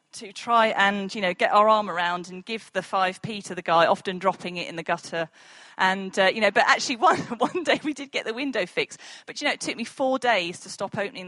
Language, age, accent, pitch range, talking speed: English, 40-59, British, 175-220 Hz, 255 wpm